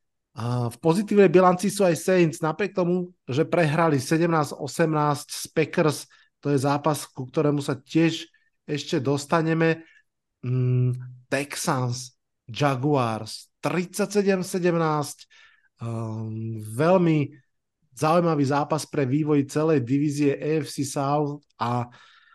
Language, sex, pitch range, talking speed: Slovak, male, 135-165 Hz, 90 wpm